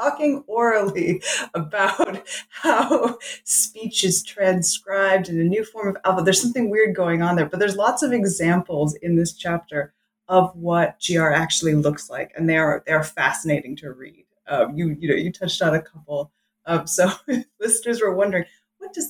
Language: English